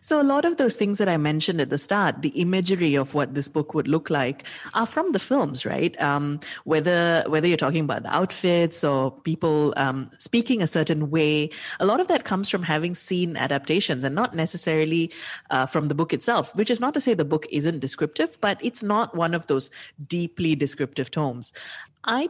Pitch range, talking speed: 150-195 Hz, 205 wpm